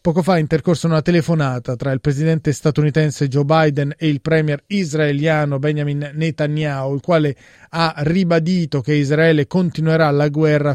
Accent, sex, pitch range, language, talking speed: native, male, 140-165 Hz, Italian, 150 wpm